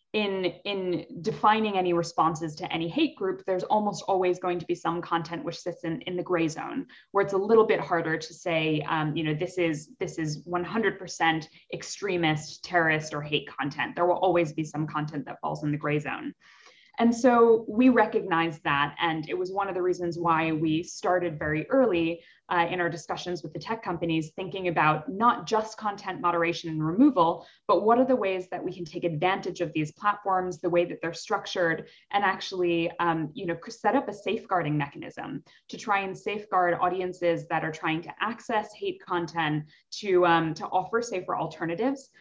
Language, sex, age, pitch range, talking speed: English, female, 10-29, 165-195 Hz, 190 wpm